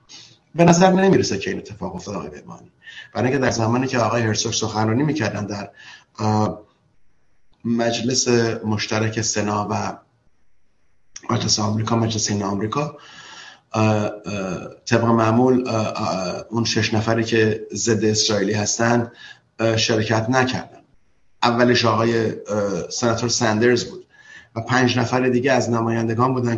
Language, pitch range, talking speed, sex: Persian, 105-120 Hz, 115 wpm, male